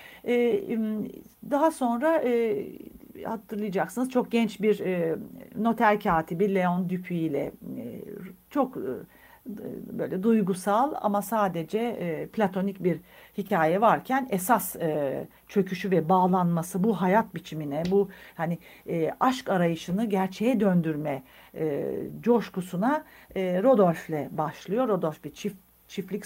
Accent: native